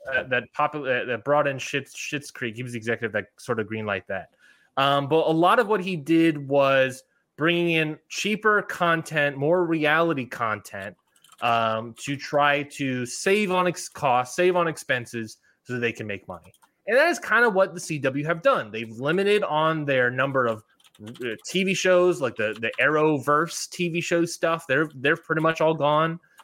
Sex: male